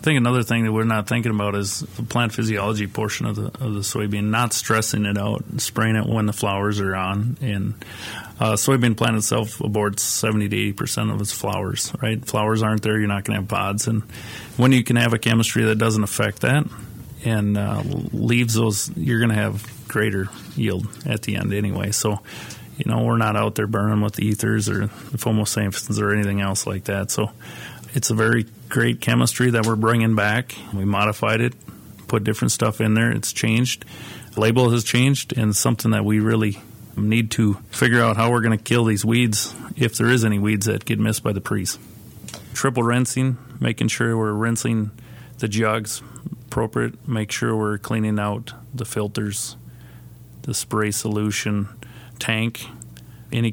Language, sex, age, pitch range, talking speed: English, male, 30-49, 105-120 Hz, 185 wpm